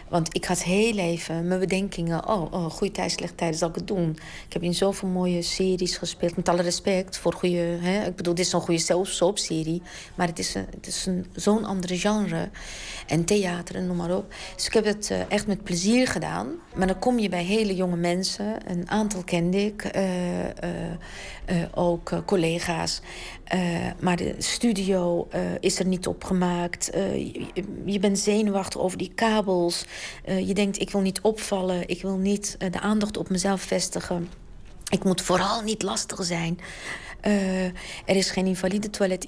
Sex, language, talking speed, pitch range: female, Dutch, 180 wpm, 175-195 Hz